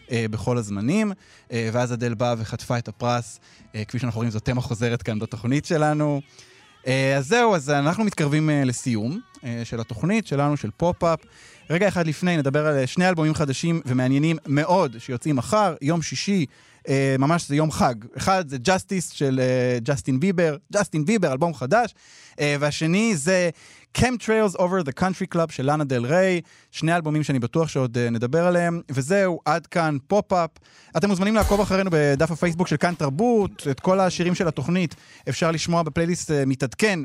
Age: 20-39